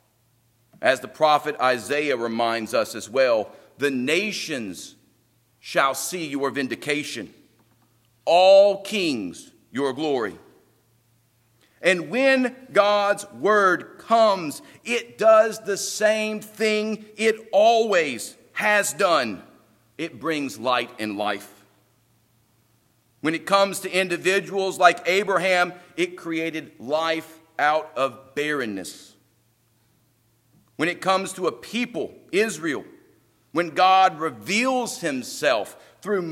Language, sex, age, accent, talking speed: English, male, 50-69, American, 100 wpm